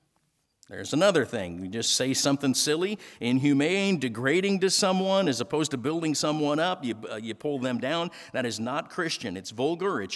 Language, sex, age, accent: English, male, 50-69, American